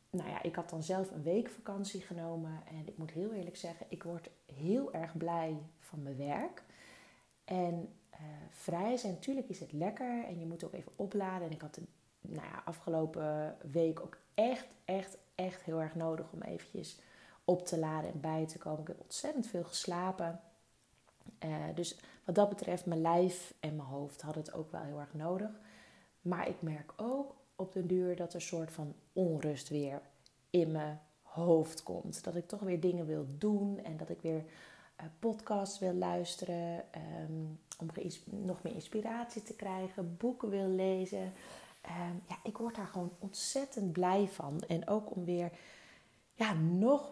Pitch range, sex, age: 160-190 Hz, female, 30-49